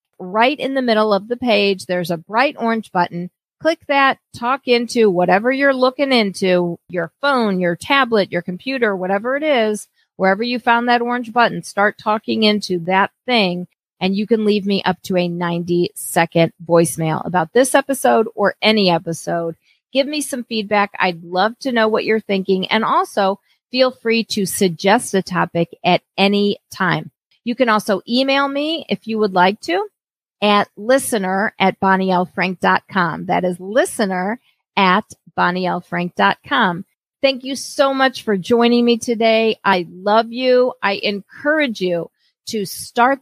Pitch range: 185-245 Hz